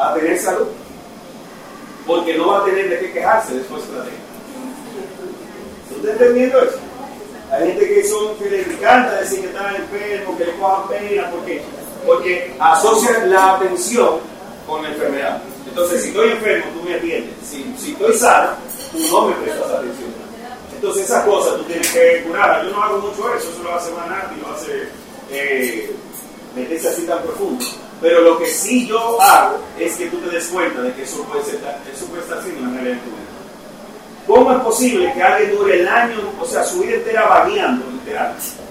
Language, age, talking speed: Spanish, 40-59, 190 wpm